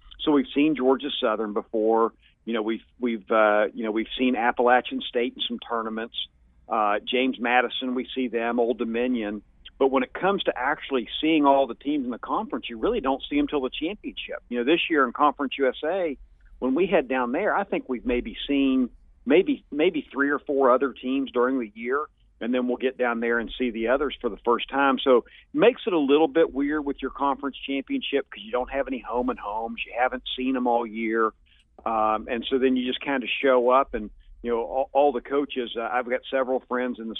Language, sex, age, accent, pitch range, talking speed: English, male, 50-69, American, 115-135 Hz, 225 wpm